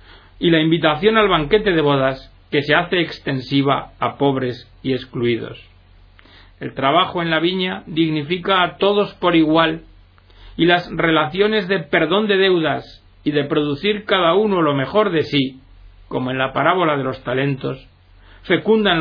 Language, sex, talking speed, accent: Spanish, male, 155 wpm, Spanish